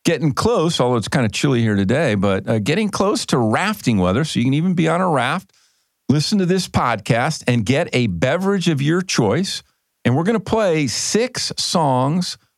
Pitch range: 105-155 Hz